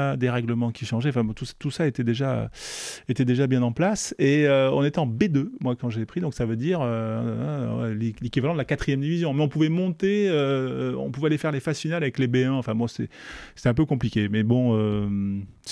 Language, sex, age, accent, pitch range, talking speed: French, male, 30-49, French, 110-140 Hz, 235 wpm